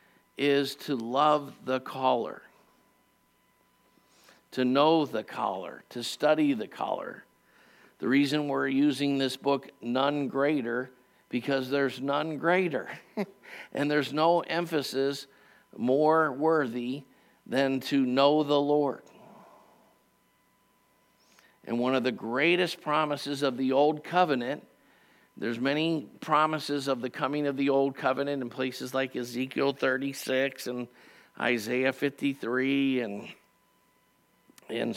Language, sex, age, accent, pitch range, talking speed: English, male, 50-69, American, 125-145 Hz, 115 wpm